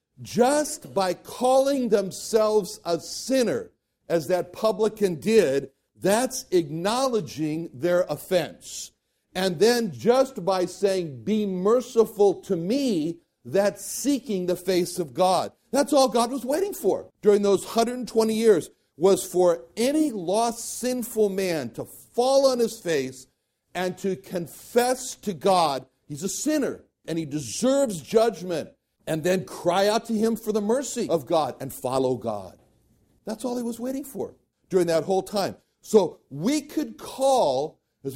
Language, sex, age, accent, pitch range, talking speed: English, male, 60-79, American, 165-230 Hz, 145 wpm